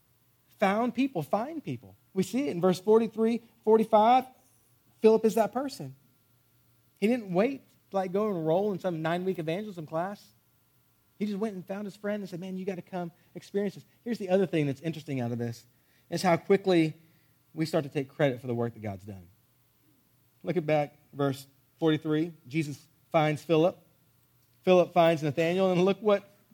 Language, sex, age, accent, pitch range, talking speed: English, male, 40-59, American, 135-190 Hz, 180 wpm